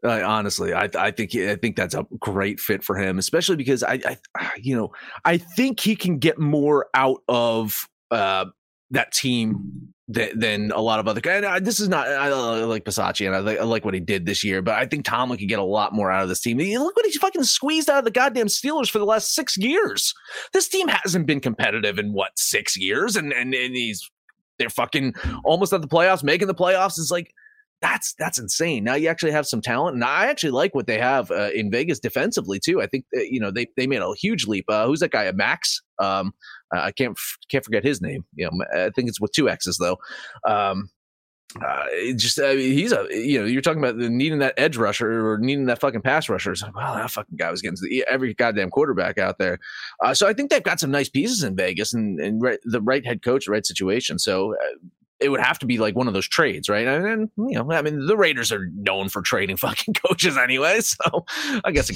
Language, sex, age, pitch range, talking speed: English, male, 30-49, 105-180 Hz, 245 wpm